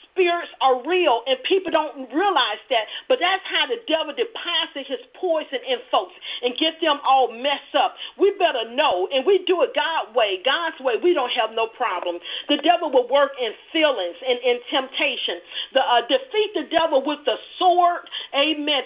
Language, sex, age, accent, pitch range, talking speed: English, female, 40-59, American, 260-360 Hz, 185 wpm